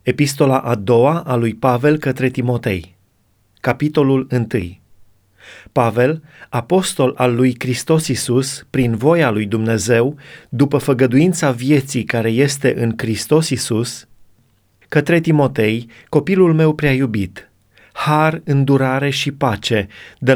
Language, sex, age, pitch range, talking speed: Romanian, male, 30-49, 115-145 Hz, 115 wpm